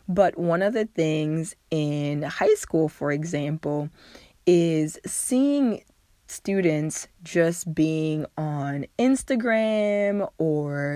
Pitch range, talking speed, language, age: 150-180 Hz, 100 wpm, English, 20-39